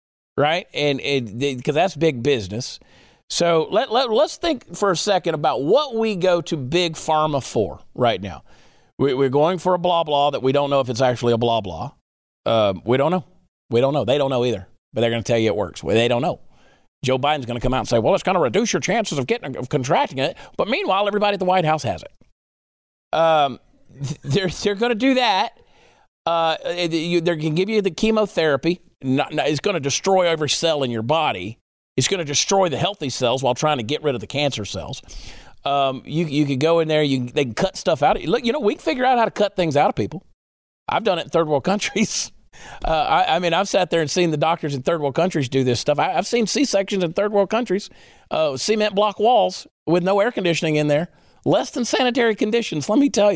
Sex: male